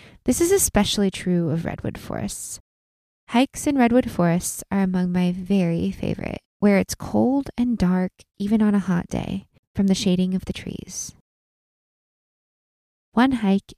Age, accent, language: 20-39, American, English